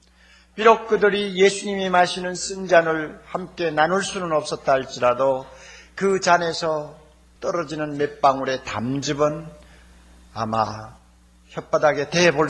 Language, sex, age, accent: Korean, male, 50-69, native